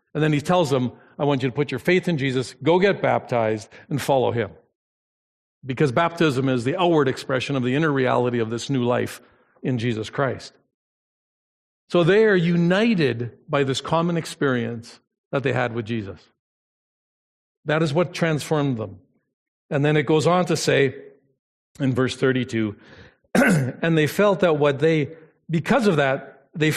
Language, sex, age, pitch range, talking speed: English, male, 50-69, 135-190 Hz, 170 wpm